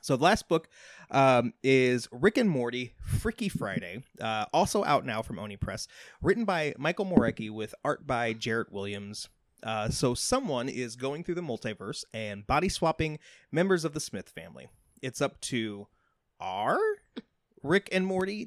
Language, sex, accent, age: English, male, American, 30-49